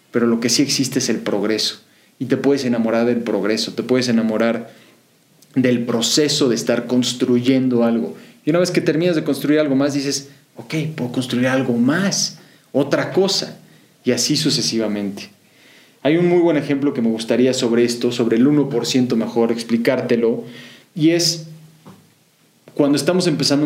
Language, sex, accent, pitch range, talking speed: Spanish, male, Mexican, 120-155 Hz, 160 wpm